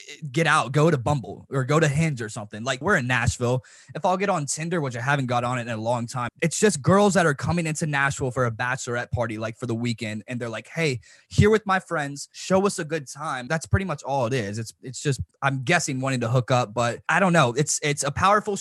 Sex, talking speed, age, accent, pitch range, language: male, 265 wpm, 20-39, American, 115-160 Hz, English